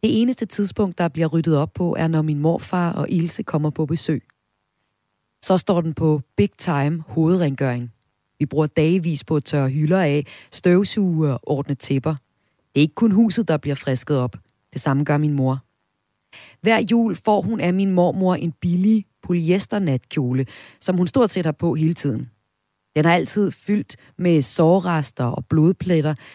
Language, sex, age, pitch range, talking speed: Danish, female, 30-49, 140-180 Hz, 175 wpm